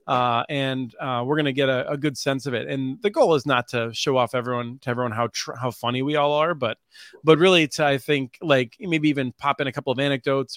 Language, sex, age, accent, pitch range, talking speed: English, male, 30-49, American, 125-160 Hz, 255 wpm